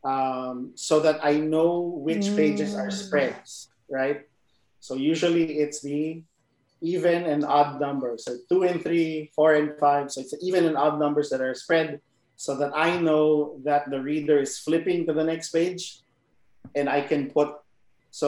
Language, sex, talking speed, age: English, male, 170 wpm, 20-39